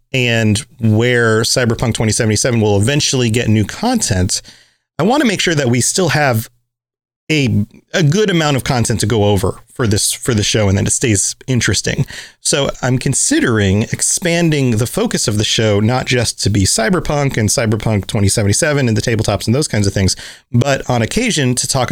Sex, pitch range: male, 105-135 Hz